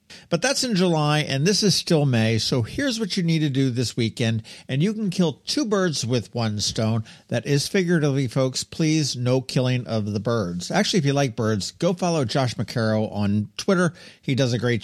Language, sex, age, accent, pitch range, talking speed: English, male, 50-69, American, 110-160 Hz, 210 wpm